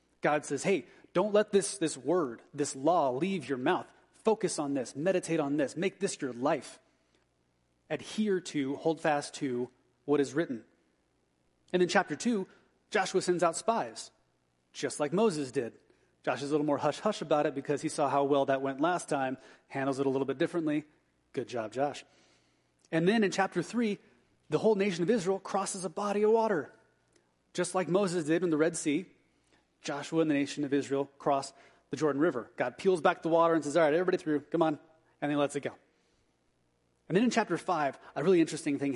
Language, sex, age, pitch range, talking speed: English, male, 30-49, 140-180 Hz, 200 wpm